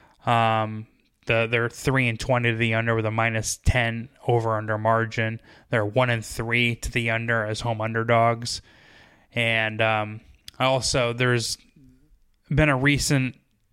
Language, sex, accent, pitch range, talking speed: English, male, American, 115-130 Hz, 145 wpm